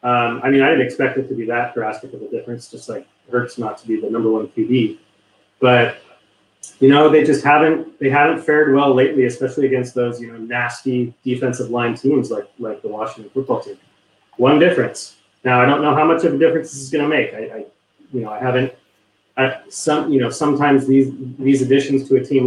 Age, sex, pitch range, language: 30-49, male, 120-145 Hz, English